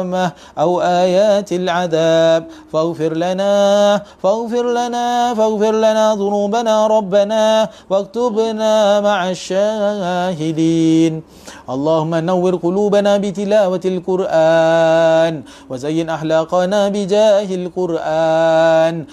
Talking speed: 70 wpm